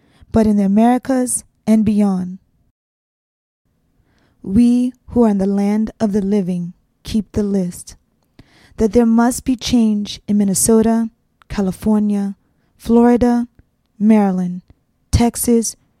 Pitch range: 195-225 Hz